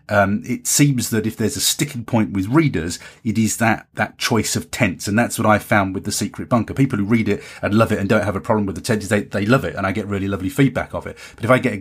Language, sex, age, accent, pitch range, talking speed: English, male, 30-49, British, 100-125 Hz, 295 wpm